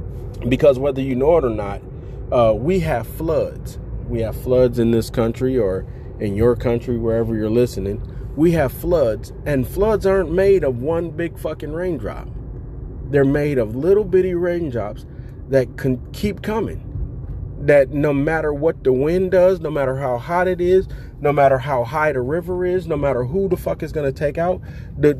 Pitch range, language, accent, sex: 125-165 Hz, English, American, male